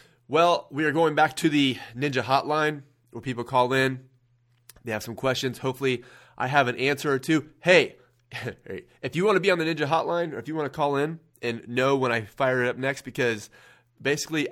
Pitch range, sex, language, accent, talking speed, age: 120-150 Hz, male, English, American, 205 wpm, 30-49